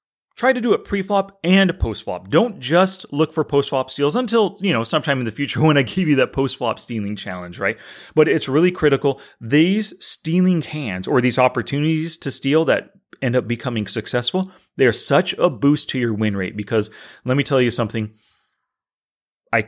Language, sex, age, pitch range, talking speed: English, male, 30-49, 110-155 Hz, 200 wpm